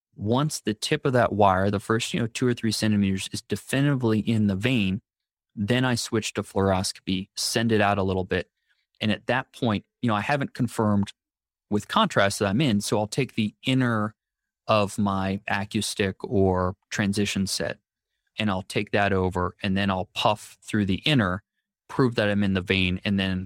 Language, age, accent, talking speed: English, 20-39, American, 190 wpm